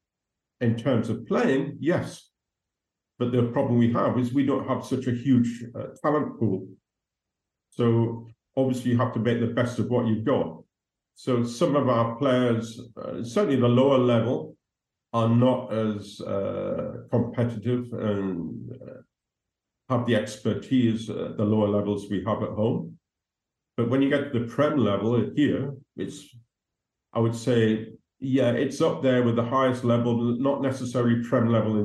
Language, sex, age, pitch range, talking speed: English, male, 50-69, 110-125 Hz, 160 wpm